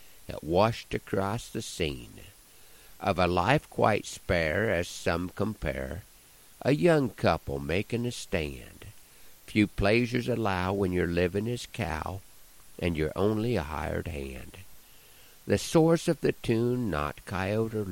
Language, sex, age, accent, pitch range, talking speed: English, male, 60-79, American, 85-115 Hz, 135 wpm